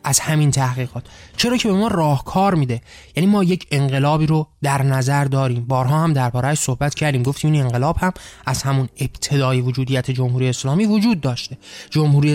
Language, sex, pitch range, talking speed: Persian, male, 130-165 Hz, 175 wpm